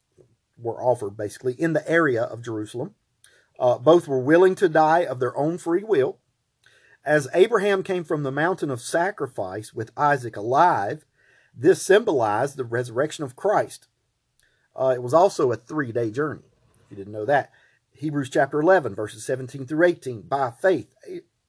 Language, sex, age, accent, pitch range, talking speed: English, male, 40-59, American, 115-155 Hz, 160 wpm